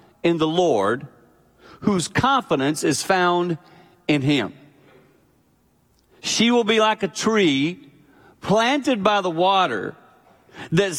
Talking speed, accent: 110 wpm, American